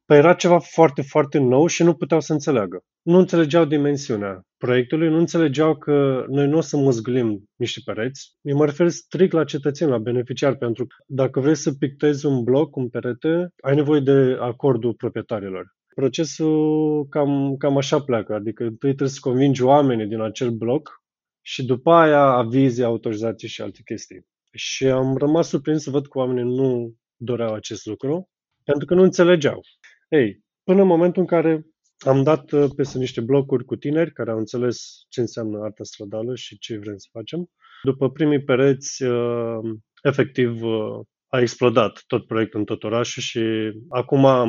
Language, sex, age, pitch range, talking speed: Romanian, male, 20-39, 120-150 Hz, 165 wpm